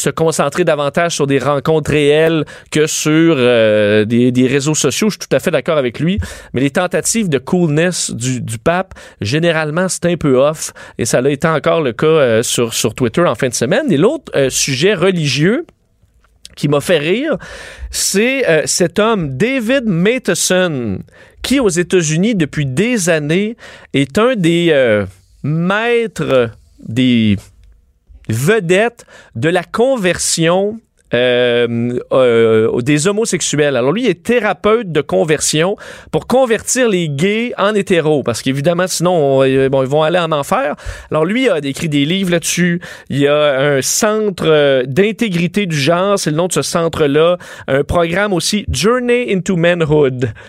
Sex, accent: male, Canadian